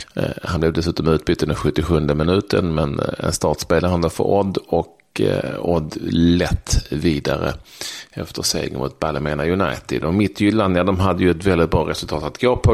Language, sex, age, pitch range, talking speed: Swedish, male, 40-59, 80-95 Hz, 170 wpm